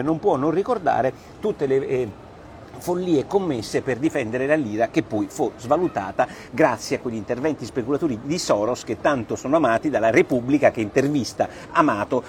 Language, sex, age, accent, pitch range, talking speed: Italian, male, 50-69, native, 120-170 Hz, 160 wpm